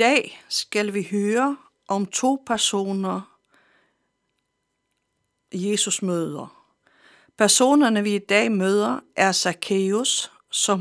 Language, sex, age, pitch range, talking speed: Danish, female, 60-79, 185-225 Hz, 100 wpm